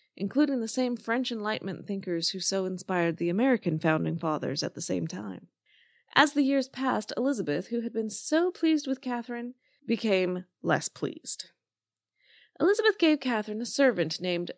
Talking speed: 155 wpm